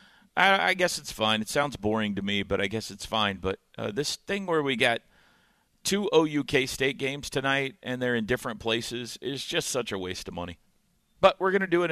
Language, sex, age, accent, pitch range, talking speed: English, male, 50-69, American, 110-160 Hz, 220 wpm